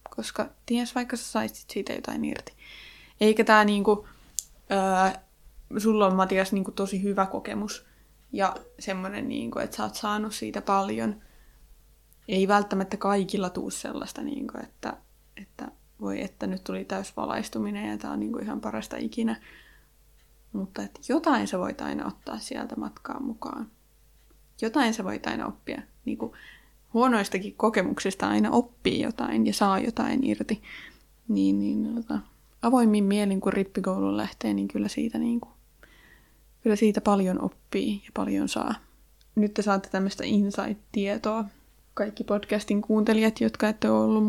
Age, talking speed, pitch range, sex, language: 20-39, 140 wpm, 195-220 Hz, female, Finnish